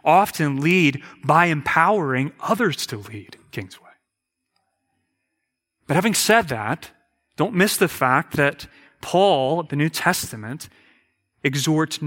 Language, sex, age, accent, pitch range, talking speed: English, male, 30-49, American, 120-160 Hz, 115 wpm